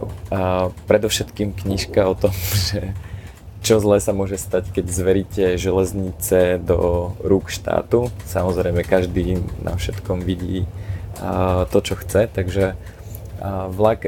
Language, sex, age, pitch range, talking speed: Slovak, male, 20-39, 90-100 Hz, 115 wpm